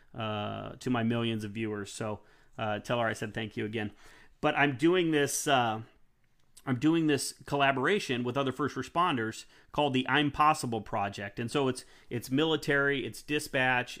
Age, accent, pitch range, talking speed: 30-49, American, 115-140 Hz, 170 wpm